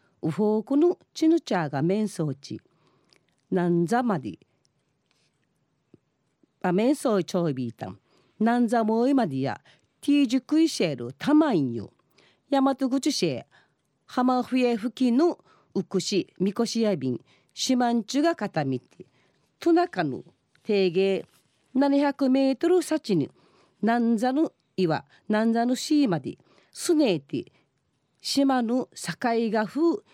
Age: 40-59